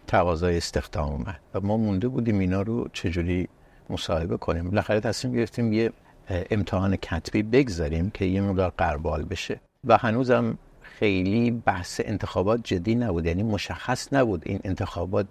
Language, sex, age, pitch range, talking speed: Persian, male, 60-79, 90-115 Hz, 140 wpm